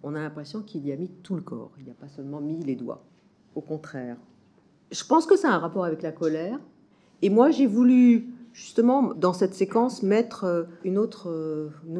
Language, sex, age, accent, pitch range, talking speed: French, female, 50-69, French, 135-190 Hz, 210 wpm